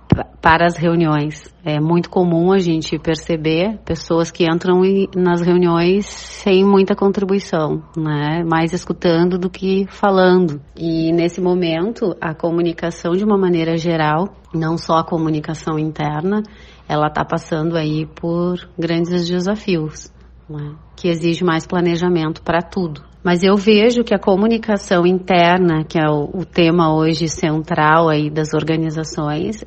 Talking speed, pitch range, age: 140 wpm, 160-185 Hz, 30-49